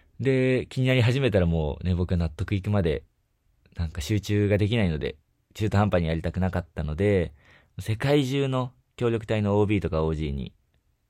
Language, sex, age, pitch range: Japanese, male, 20-39, 80-110 Hz